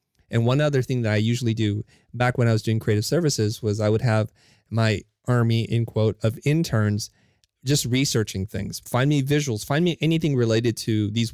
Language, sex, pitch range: English, male, 110-135 Hz